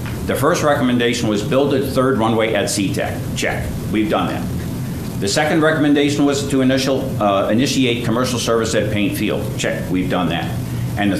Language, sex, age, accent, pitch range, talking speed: English, male, 60-79, American, 105-125 Hz, 175 wpm